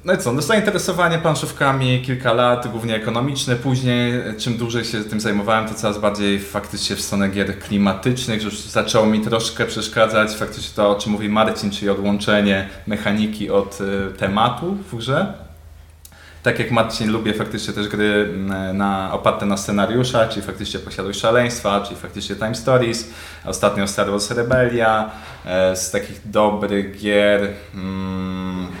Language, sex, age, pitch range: Polish, male, 20-39, 100-125 Hz